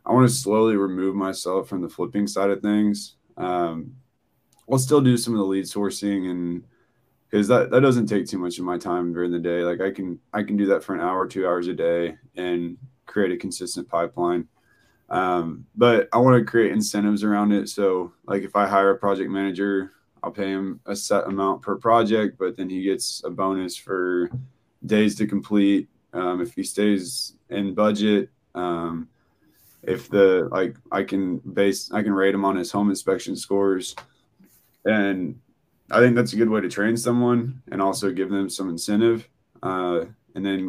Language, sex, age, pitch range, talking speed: English, male, 20-39, 95-110 Hz, 190 wpm